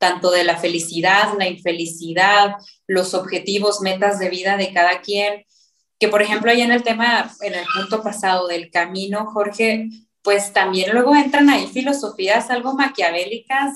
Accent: Mexican